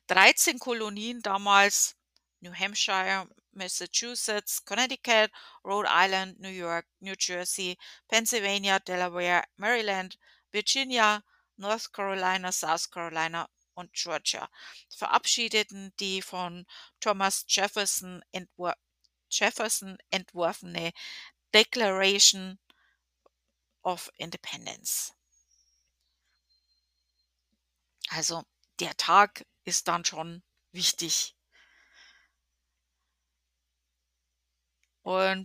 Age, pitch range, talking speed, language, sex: 50-69, 175-215 Hz, 70 wpm, German, female